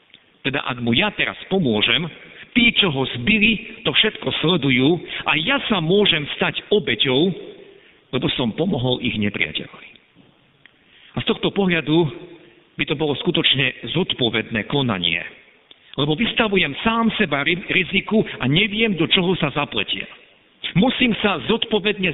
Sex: male